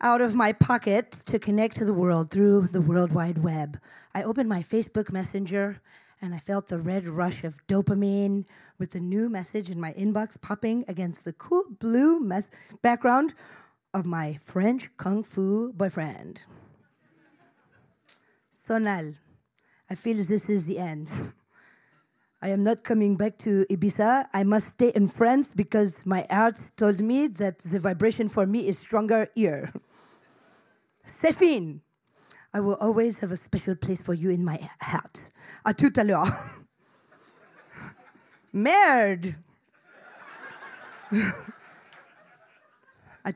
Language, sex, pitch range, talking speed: English, female, 175-220 Hz, 135 wpm